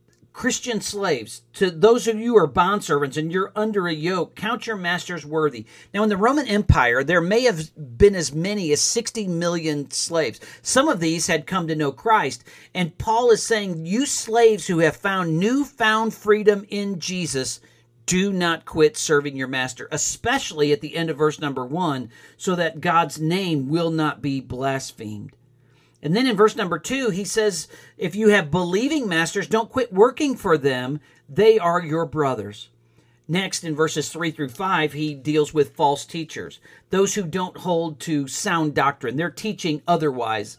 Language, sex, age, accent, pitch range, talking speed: English, male, 50-69, American, 145-195 Hz, 175 wpm